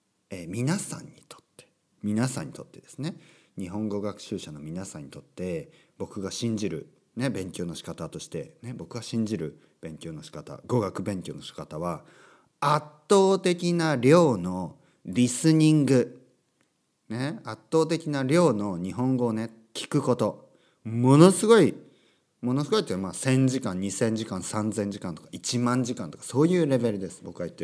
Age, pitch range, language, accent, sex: 40-59, 100-155 Hz, Japanese, native, male